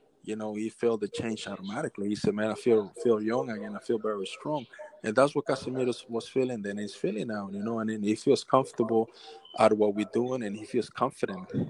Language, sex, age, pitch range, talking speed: English, male, 20-39, 110-135 Hz, 230 wpm